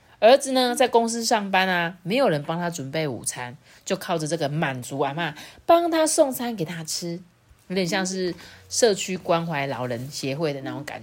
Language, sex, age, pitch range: Chinese, female, 30-49, 160-235 Hz